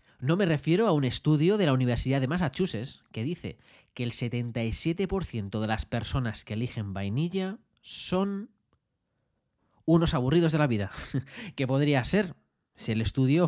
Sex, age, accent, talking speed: male, 20-39, Spanish, 155 wpm